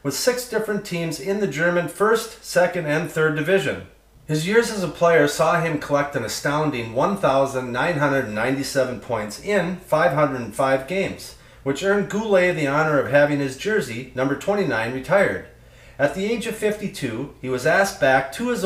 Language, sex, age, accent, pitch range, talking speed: English, male, 40-59, American, 130-180 Hz, 160 wpm